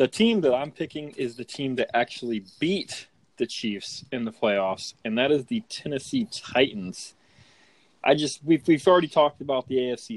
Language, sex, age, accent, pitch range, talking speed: English, male, 20-39, American, 110-135 Hz, 185 wpm